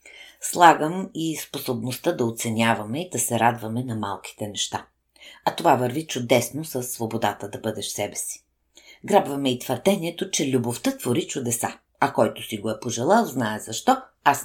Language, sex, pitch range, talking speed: Bulgarian, female, 115-145 Hz, 160 wpm